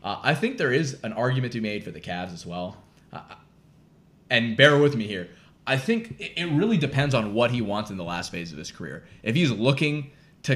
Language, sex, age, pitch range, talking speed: English, male, 20-39, 105-135 Hz, 240 wpm